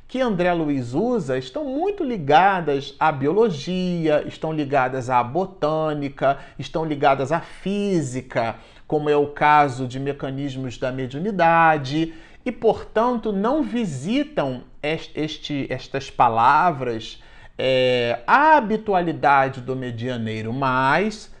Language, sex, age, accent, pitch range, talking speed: Portuguese, male, 40-59, Brazilian, 140-215 Hz, 100 wpm